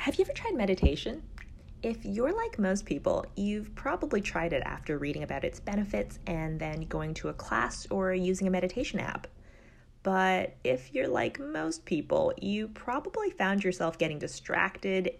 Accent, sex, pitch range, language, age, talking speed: American, female, 145-190 Hz, English, 30-49, 165 wpm